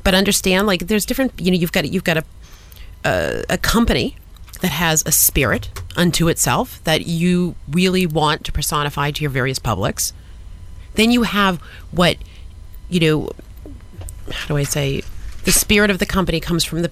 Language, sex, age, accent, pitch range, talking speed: English, female, 30-49, American, 135-205 Hz, 175 wpm